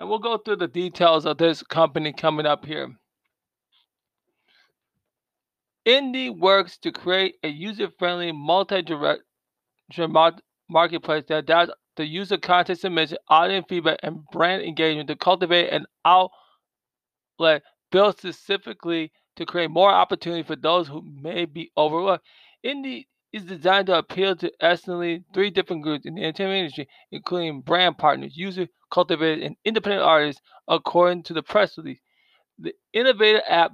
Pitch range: 160-190 Hz